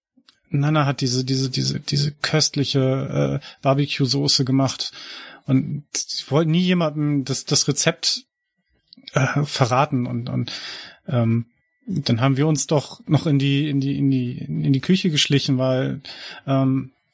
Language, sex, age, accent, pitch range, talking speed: German, male, 30-49, German, 135-155 Hz, 145 wpm